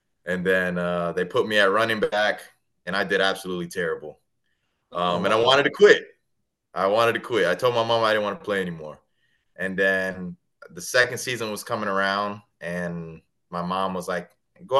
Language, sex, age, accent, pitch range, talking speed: English, male, 20-39, American, 90-115 Hz, 195 wpm